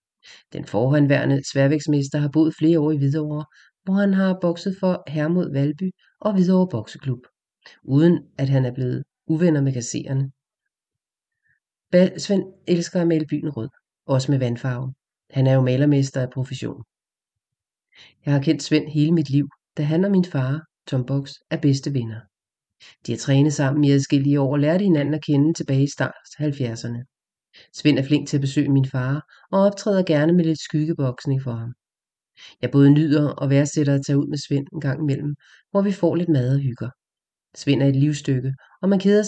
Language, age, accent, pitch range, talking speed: English, 30-49, Danish, 135-160 Hz, 185 wpm